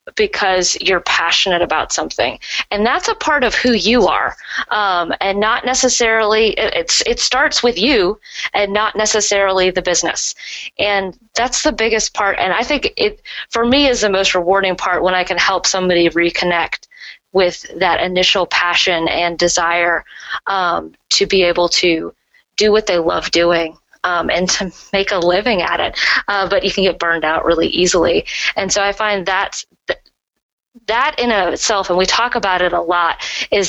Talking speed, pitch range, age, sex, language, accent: 175 wpm, 180-220 Hz, 20-39, female, English, American